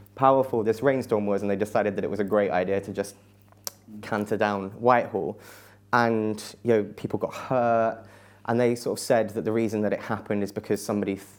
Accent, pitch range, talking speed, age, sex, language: British, 100-110 Hz, 200 wpm, 20-39, male, English